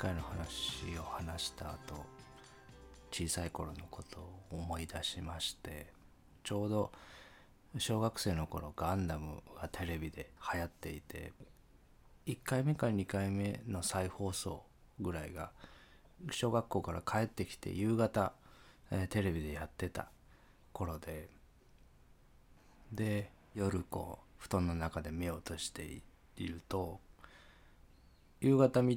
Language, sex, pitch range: Japanese, male, 80-100 Hz